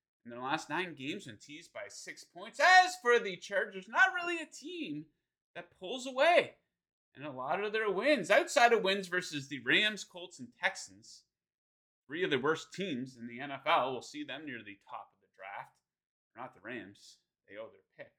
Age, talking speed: 30-49, 200 wpm